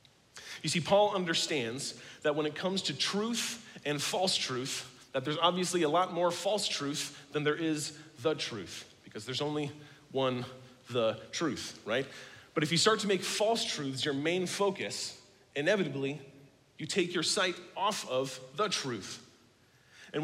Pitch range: 130-170 Hz